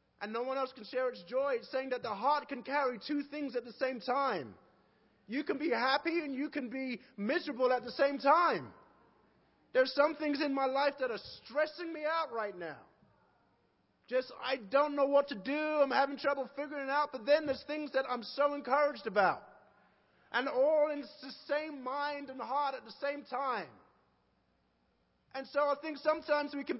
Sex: male